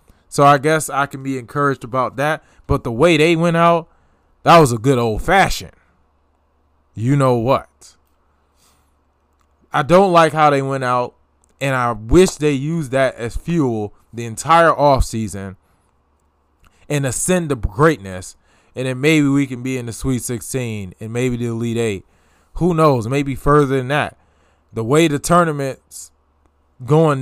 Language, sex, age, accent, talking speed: English, male, 20-39, American, 155 wpm